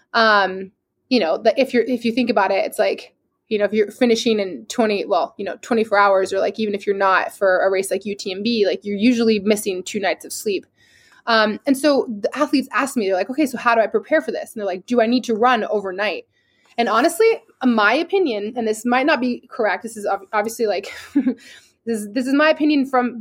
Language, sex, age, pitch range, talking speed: English, female, 20-39, 210-275 Hz, 235 wpm